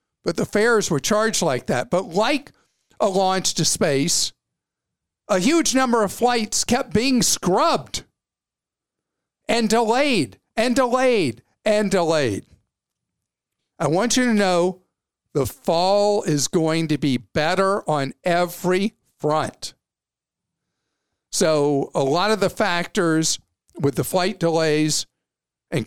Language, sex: English, male